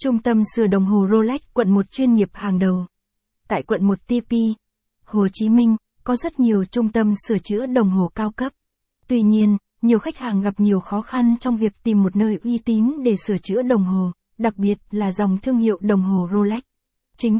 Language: Vietnamese